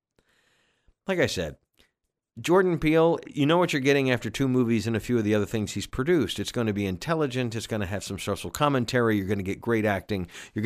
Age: 50-69